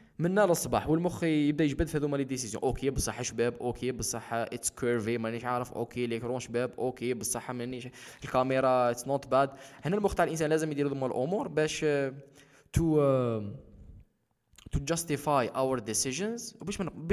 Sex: male